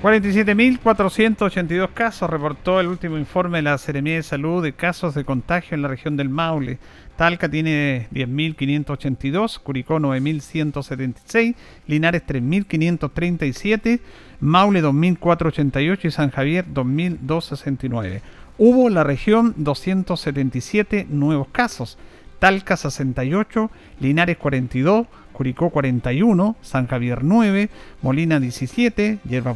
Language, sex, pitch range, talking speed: Spanish, male, 140-200 Hz, 105 wpm